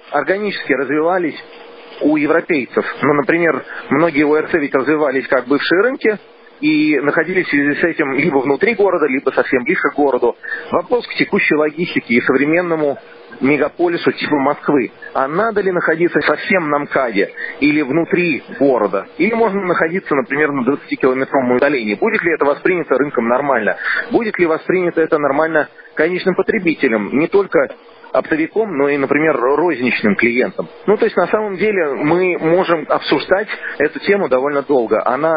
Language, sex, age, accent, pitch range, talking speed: Russian, male, 40-59, native, 140-180 Hz, 150 wpm